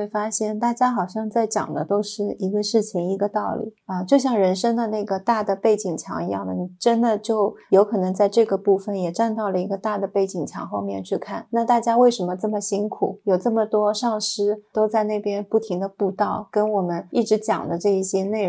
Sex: female